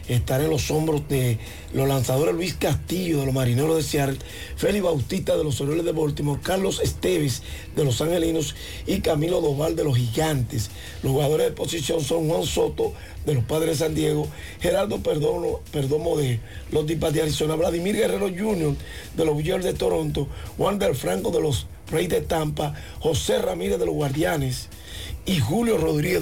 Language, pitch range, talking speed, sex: Spanish, 120-155 Hz, 175 wpm, male